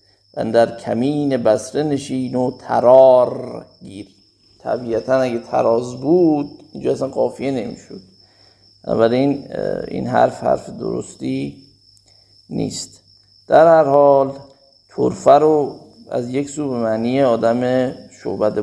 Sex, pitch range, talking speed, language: male, 100-130 Hz, 110 wpm, Persian